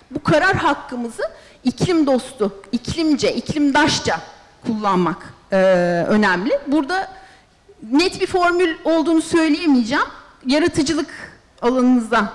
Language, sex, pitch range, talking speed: Turkish, female, 230-315 Hz, 85 wpm